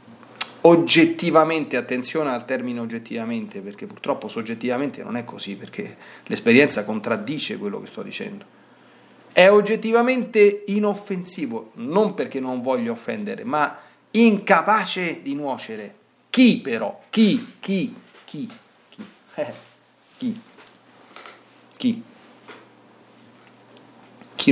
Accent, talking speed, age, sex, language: native, 95 wpm, 40-59, male, Italian